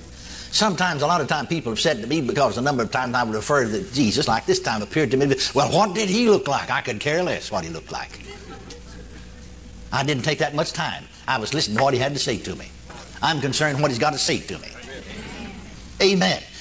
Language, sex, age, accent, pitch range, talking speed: English, male, 60-79, American, 125-185 Hz, 240 wpm